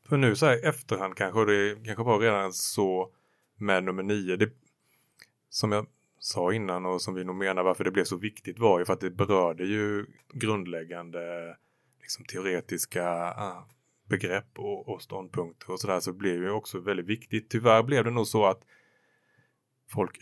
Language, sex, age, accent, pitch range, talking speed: Swedish, male, 30-49, Norwegian, 95-115 Hz, 180 wpm